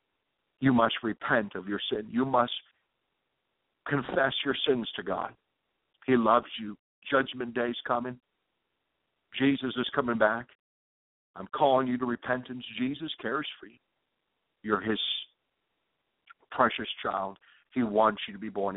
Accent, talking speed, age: American, 135 wpm, 60-79